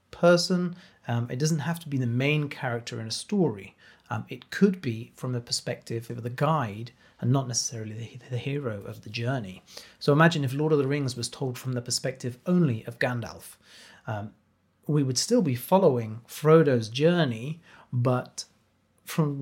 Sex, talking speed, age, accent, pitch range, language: male, 175 wpm, 30-49, British, 115-150 Hz, English